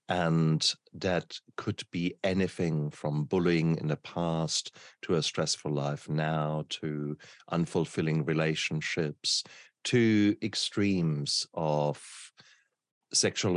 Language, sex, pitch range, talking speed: English, male, 75-95 Hz, 95 wpm